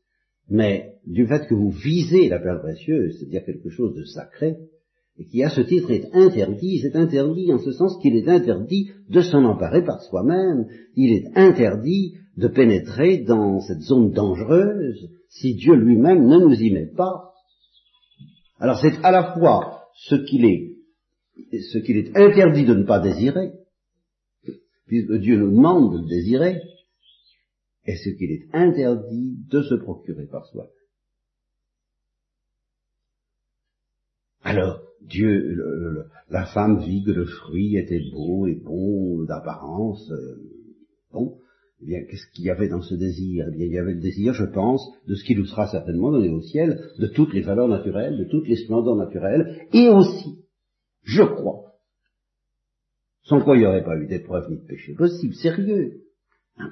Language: French